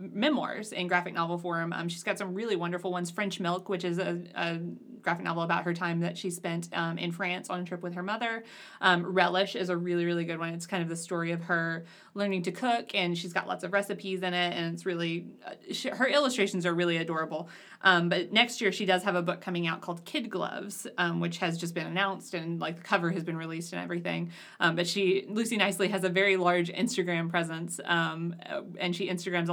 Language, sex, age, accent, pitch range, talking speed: English, female, 20-39, American, 170-195 Hz, 235 wpm